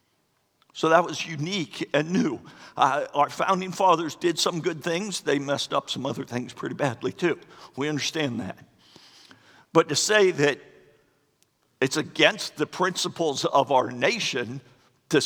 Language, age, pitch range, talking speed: English, 50-69, 130-170 Hz, 150 wpm